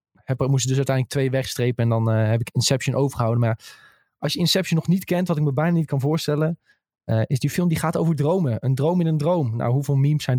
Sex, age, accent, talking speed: male, 20-39, Dutch, 250 wpm